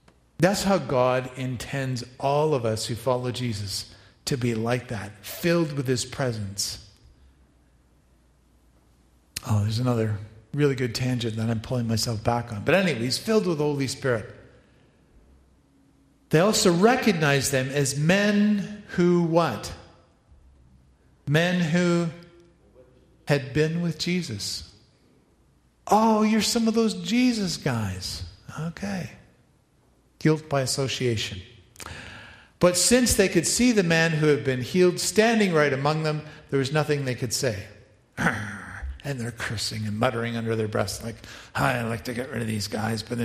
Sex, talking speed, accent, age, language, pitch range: male, 145 wpm, American, 50-69, English, 110-155 Hz